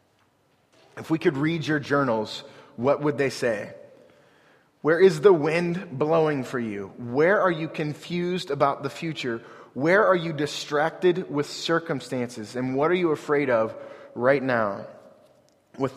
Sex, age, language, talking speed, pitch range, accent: male, 30-49, English, 145 wpm, 135-170 Hz, American